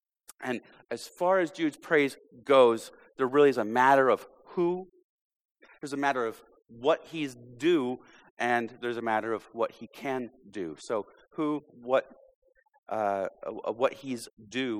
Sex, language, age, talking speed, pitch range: male, English, 40-59, 155 wpm, 115-165 Hz